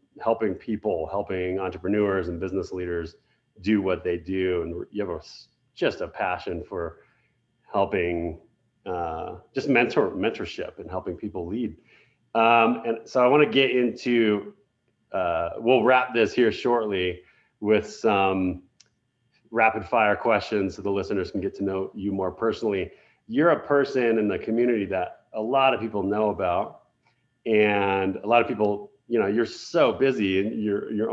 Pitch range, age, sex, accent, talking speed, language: 100-120 Hz, 30-49, male, American, 160 wpm, English